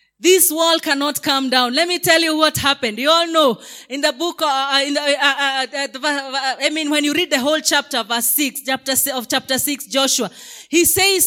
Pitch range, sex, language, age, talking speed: 255-315 Hz, female, English, 30-49, 215 wpm